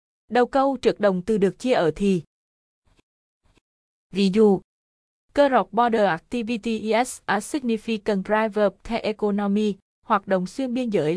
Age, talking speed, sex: 20-39, 140 wpm, female